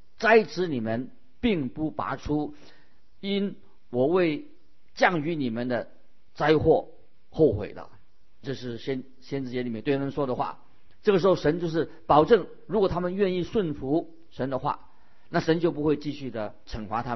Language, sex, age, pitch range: Chinese, male, 50-69, 120-160 Hz